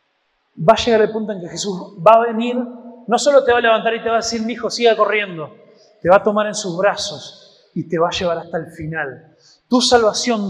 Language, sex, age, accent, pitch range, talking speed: Spanish, male, 30-49, Argentinian, 185-255 Hz, 245 wpm